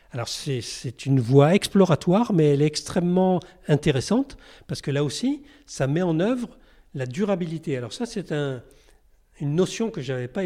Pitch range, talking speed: 135-190 Hz, 180 wpm